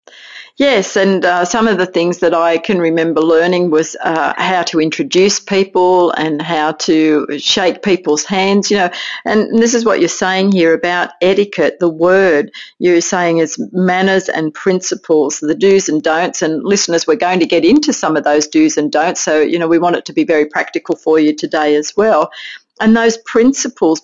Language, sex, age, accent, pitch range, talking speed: English, female, 50-69, Australian, 155-195 Hz, 195 wpm